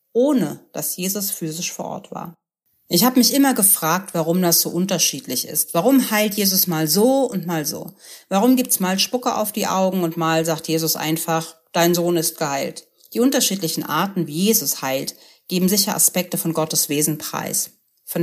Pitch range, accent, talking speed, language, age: 170-225 Hz, German, 185 wpm, German, 40-59